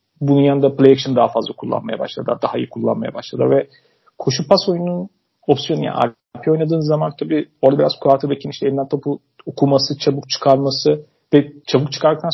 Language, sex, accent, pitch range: Turkish, male, native, 135-160 Hz